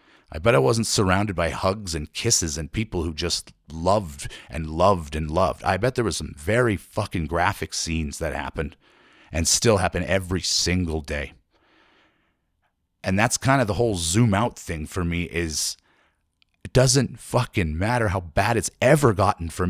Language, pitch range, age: English, 85-115 Hz, 30-49